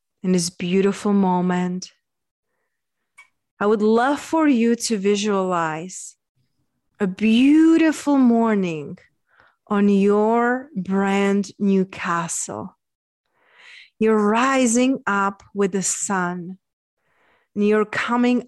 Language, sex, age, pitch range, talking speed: English, female, 30-49, 190-235 Hz, 90 wpm